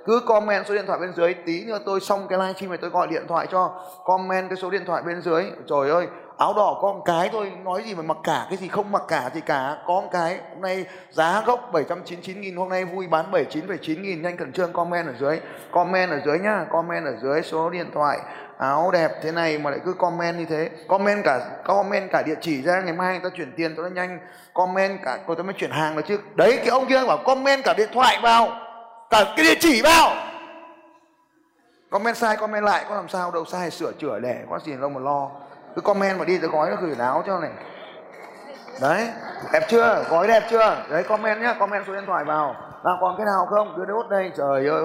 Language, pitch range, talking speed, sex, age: Vietnamese, 165-205 Hz, 240 wpm, male, 20-39